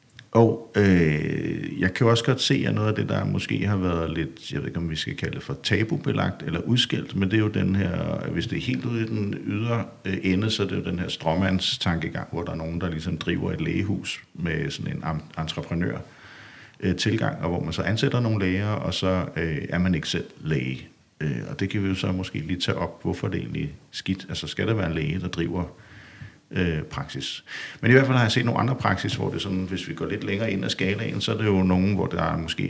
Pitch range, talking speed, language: 90-115 Hz, 250 wpm, Danish